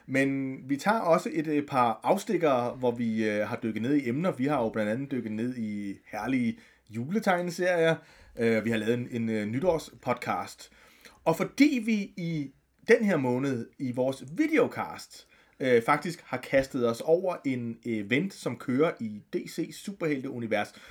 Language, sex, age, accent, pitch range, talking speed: Danish, male, 30-49, native, 130-200 Hz, 145 wpm